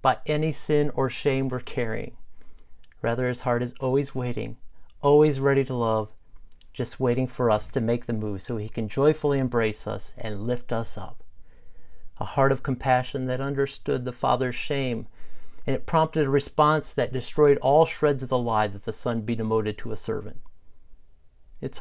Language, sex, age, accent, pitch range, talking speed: English, male, 40-59, American, 110-135 Hz, 180 wpm